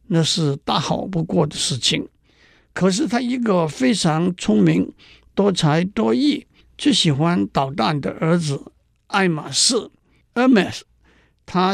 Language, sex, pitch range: Chinese, male, 155-205 Hz